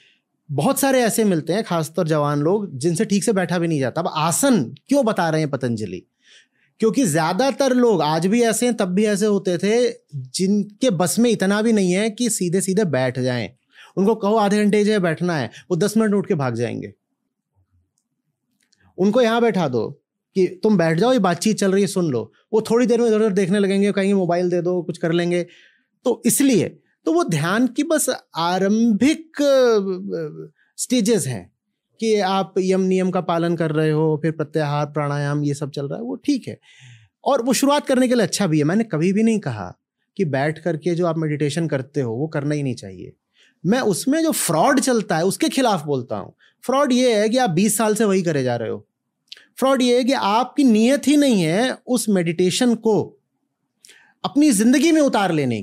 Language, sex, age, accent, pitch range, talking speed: Hindi, male, 30-49, native, 160-235 Hz, 200 wpm